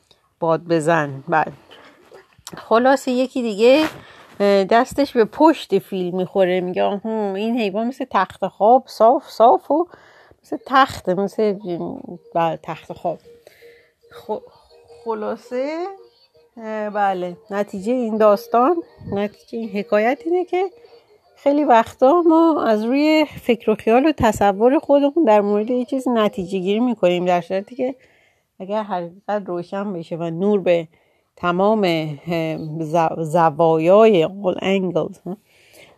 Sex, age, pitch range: female, 40-59, 175-240 Hz